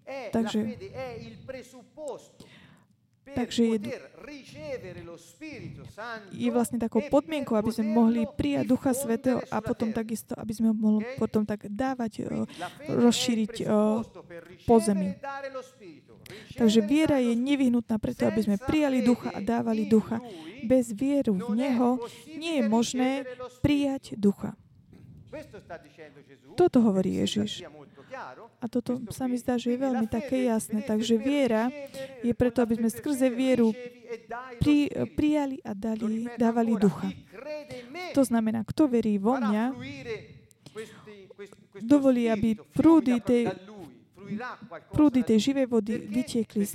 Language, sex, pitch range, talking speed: Slovak, female, 220-260 Hz, 110 wpm